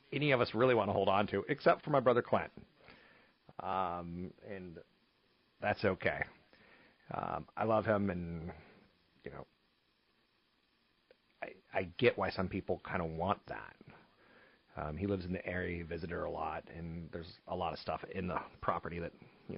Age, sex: 40-59, male